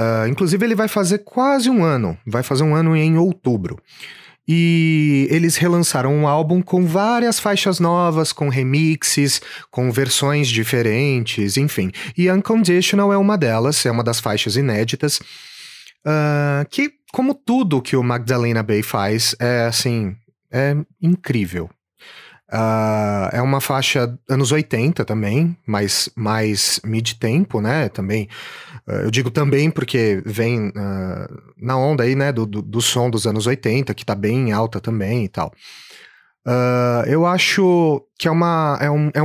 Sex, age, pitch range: male, 30-49, 115-160 Hz